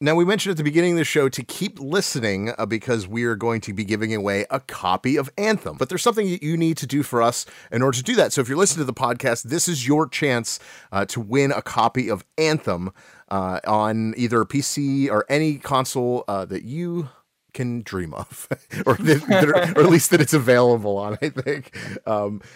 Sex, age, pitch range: male, 30-49, 110-145 Hz